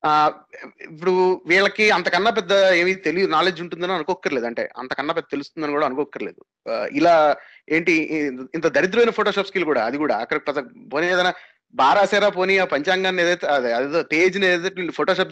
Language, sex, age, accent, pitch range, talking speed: Telugu, male, 30-49, native, 165-210 Hz, 145 wpm